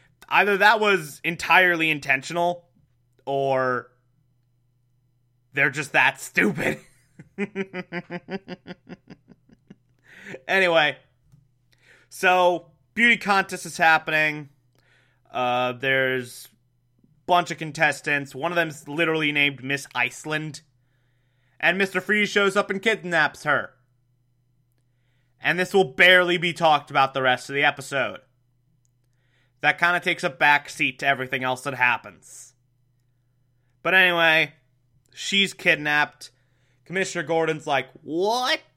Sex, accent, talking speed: male, American, 105 wpm